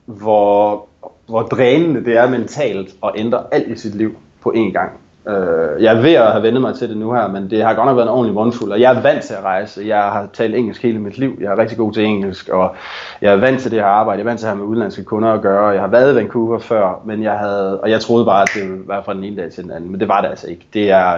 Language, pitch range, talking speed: Danish, 100-115 Hz, 305 wpm